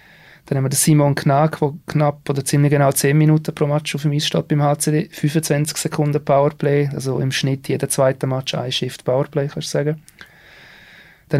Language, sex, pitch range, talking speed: German, male, 135-150 Hz, 190 wpm